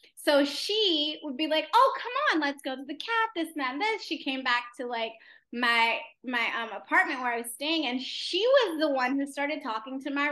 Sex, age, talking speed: female, 20-39, 225 wpm